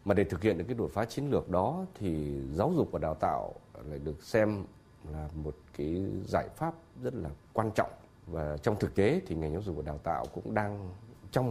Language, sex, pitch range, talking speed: Vietnamese, male, 80-115 Hz, 225 wpm